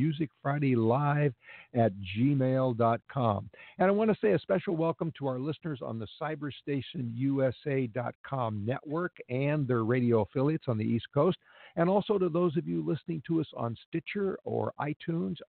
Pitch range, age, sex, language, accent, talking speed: 115-145 Hz, 60-79, male, English, American, 165 wpm